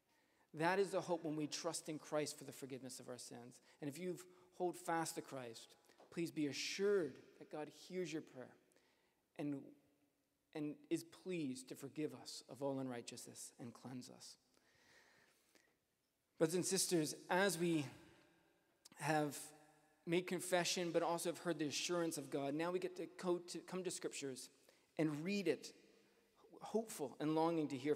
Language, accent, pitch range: English, American, 150-190 Hz